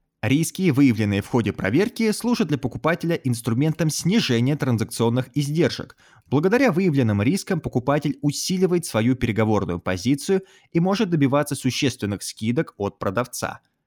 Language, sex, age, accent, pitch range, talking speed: Russian, male, 20-39, native, 110-165 Hz, 115 wpm